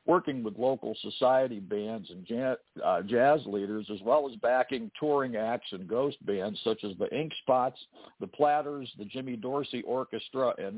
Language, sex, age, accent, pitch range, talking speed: English, male, 60-79, American, 110-140 Hz, 175 wpm